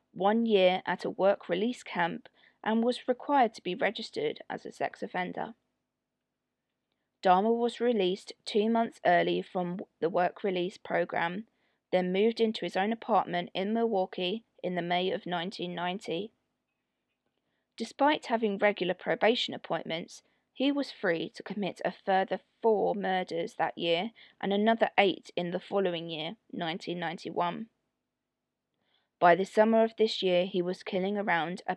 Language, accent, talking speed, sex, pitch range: English, British, 145 wpm, female, 180-225 Hz